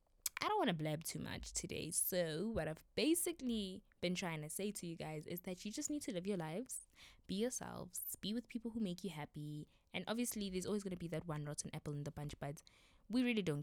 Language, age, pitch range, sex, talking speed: English, 20-39, 145-185 Hz, female, 240 wpm